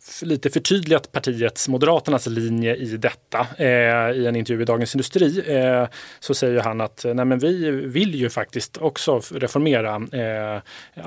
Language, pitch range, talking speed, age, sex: Swedish, 115-140 Hz, 150 wpm, 30-49, male